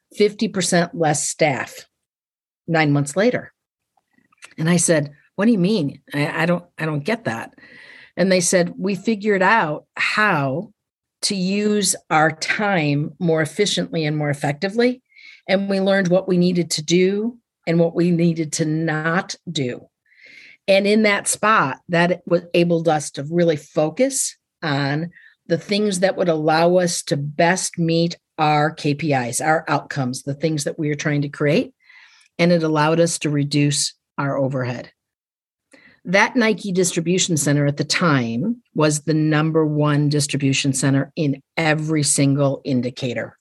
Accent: American